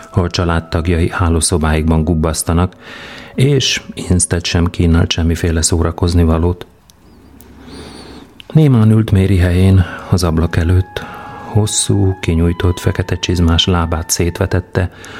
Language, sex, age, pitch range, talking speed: Hungarian, male, 40-59, 85-105 Hz, 95 wpm